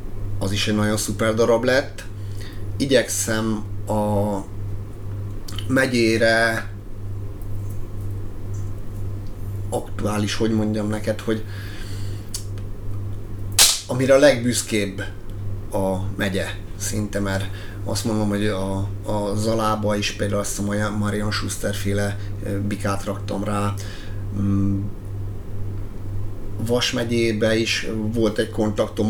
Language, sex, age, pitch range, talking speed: Hungarian, male, 30-49, 100-105 Hz, 90 wpm